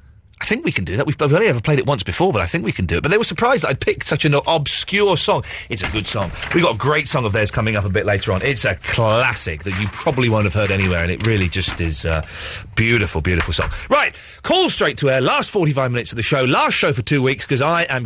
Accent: British